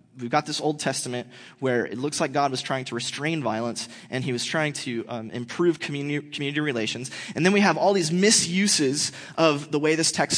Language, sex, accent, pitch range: English, male, American, 120-165 Hz